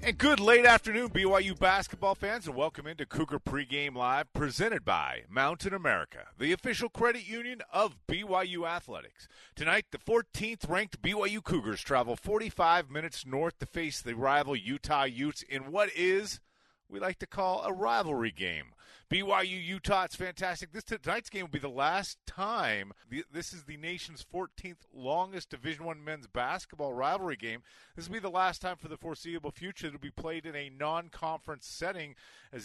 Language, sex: English, male